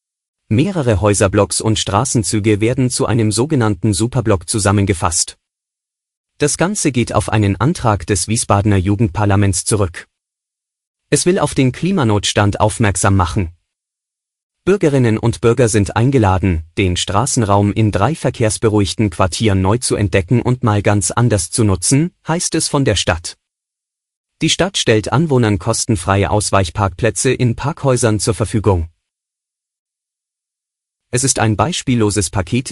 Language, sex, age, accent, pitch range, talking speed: German, male, 30-49, German, 100-120 Hz, 125 wpm